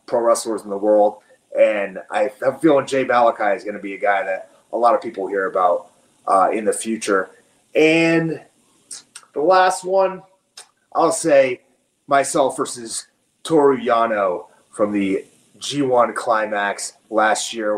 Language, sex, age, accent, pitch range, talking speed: English, male, 30-49, American, 115-165 Hz, 145 wpm